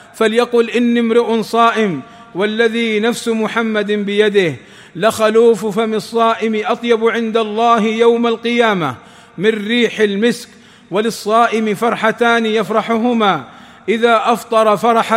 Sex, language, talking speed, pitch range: male, Arabic, 100 wpm, 215-230 Hz